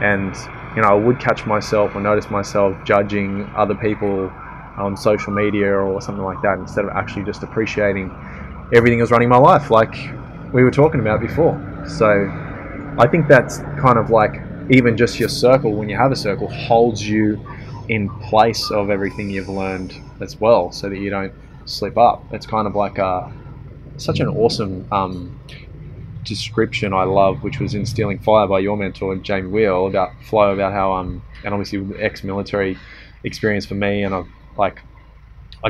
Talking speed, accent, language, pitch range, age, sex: 175 wpm, Australian, English, 100-115 Hz, 20-39, male